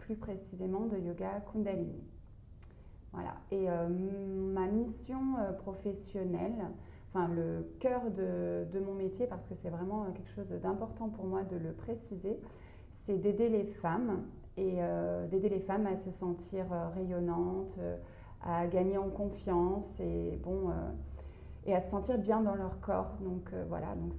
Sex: female